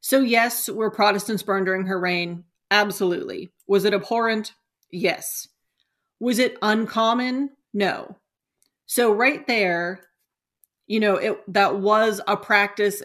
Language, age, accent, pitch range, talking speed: English, 30-49, American, 195-230 Hz, 120 wpm